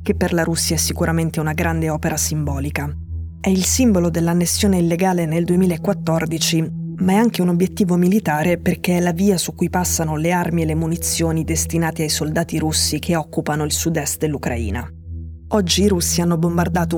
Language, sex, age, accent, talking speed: Italian, female, 20-39, native, 175 wpm